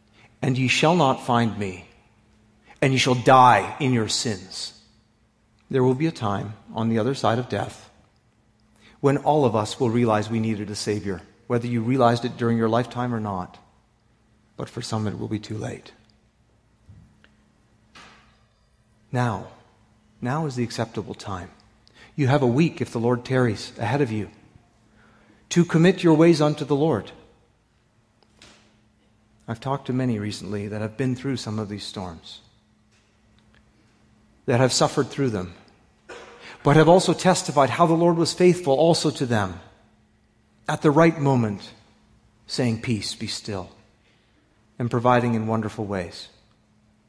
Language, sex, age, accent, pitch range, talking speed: English, male, 40-59, American, 110-130 Hz, 150 wpm